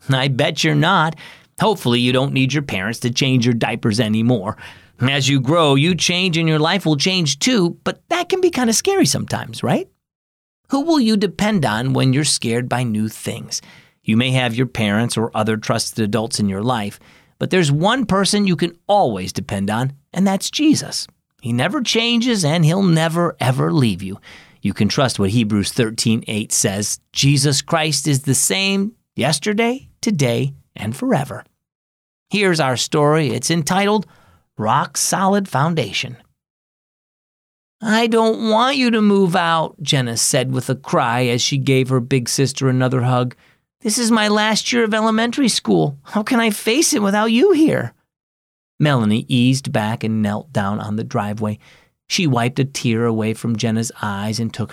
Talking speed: 175 wpm